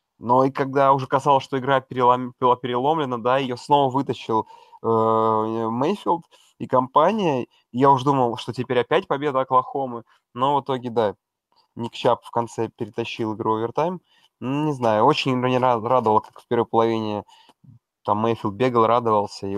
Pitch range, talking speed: 115-140 Hz, 155 wpm